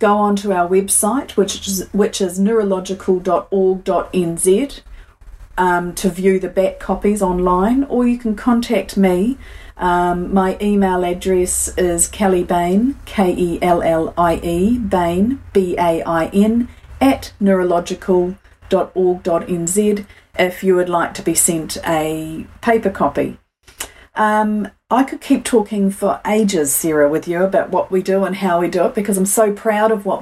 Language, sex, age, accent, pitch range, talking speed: English, female, 40-59, Australian, 180-210 Hz, 135 wpm